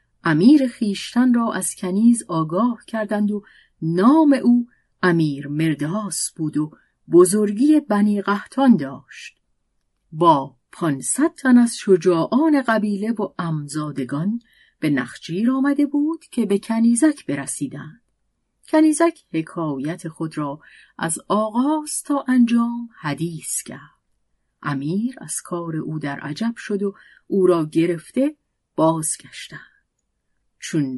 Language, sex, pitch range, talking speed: Persian, female, 160-245 Hz, 110 wpm